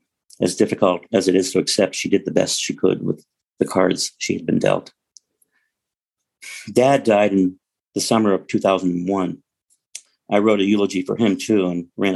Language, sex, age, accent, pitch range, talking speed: English, male, 50-69, American, 95-110 Hz, 180 wpm